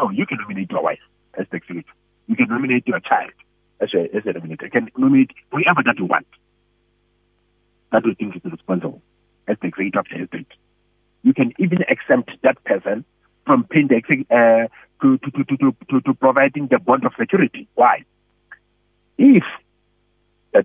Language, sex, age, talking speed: English, male, 60-79, 165 wpm